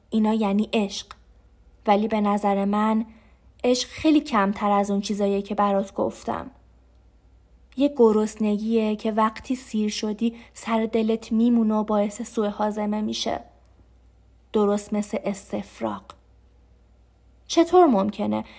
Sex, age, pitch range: female, 20-39, 205-225 Hz